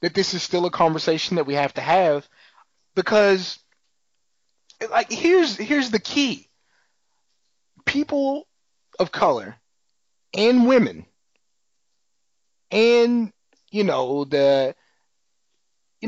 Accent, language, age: American, English, 30-49